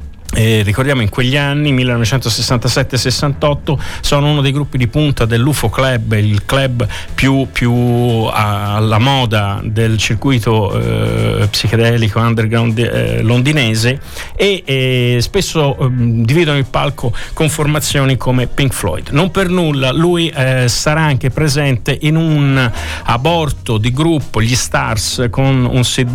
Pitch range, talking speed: 115-150 Hz, 130 wpm